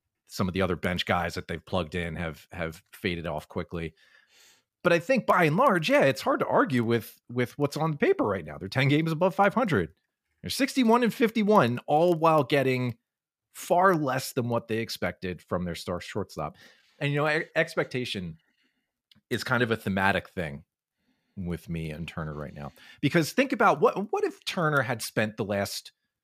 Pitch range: 90-140 Hz